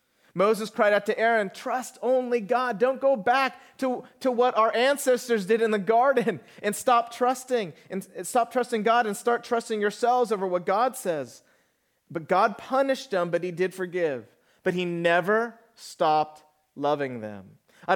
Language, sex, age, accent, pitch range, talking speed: English, male, 30-49, American, 150-215 Hz, 170 wpm